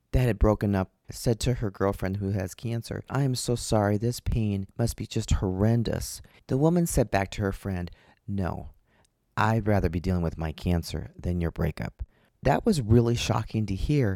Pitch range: 95-115 Hz